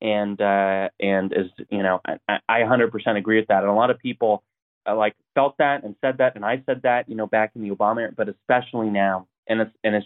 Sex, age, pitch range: male, 20-39, 100-115 Hz